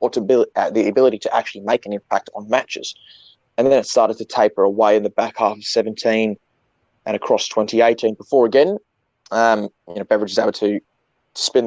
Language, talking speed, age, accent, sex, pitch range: English, 200 wpm, 20-39, Australian, male, 105-125 Hz